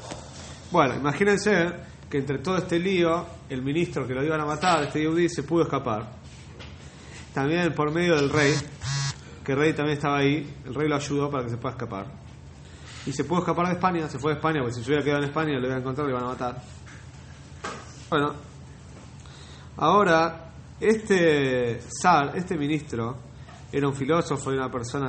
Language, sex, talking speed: Spanish, male, 180 wpm